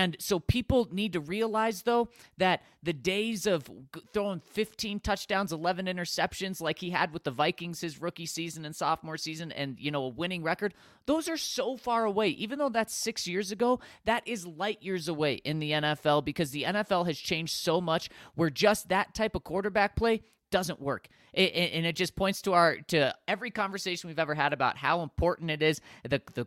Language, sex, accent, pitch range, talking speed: English, male, American, 140-190 Hz, 205 wpm